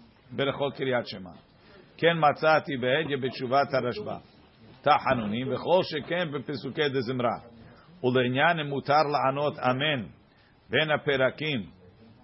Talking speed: 75 wpm